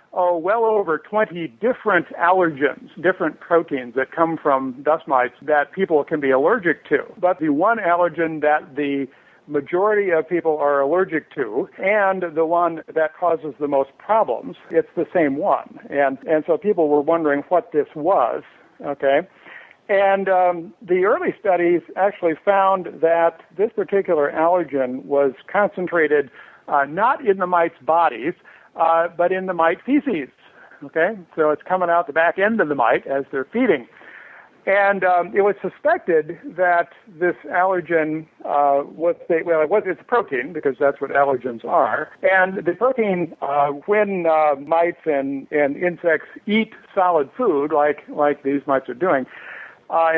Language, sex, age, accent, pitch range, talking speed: English, male, 60-79, American, 145-195 Hz, 160 wpm